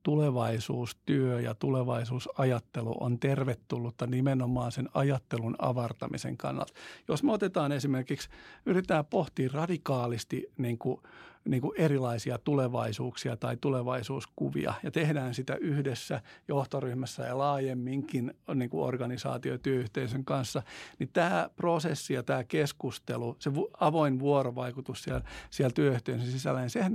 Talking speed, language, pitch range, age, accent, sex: 105 wpm, Finnish, 125-145 Hz, 50-69, native, male